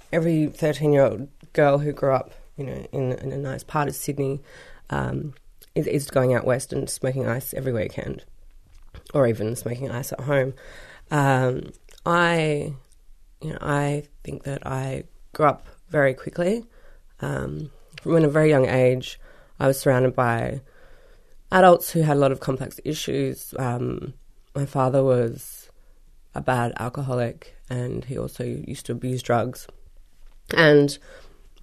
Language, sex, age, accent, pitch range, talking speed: English, female, 20-39, Australian, 125-150 Hz, 150 wpm